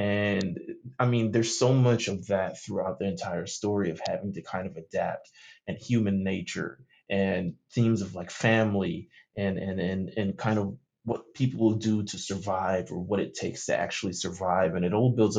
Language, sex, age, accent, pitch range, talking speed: English, male, 20-39, American, 95-125 Hz, 190 wpm